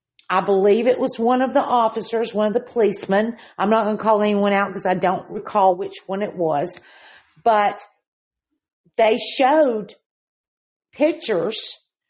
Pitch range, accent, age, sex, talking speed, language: 195-235 Hz, American, 50-69, female, 155 wpm, English